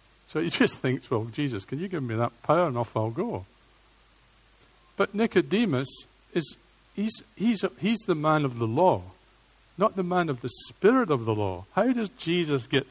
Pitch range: 120-170 Hz